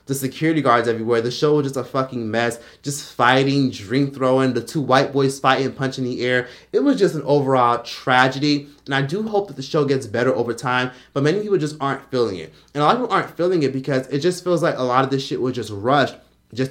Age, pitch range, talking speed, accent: 20-39, 125-145 Hz, 250 wpm, American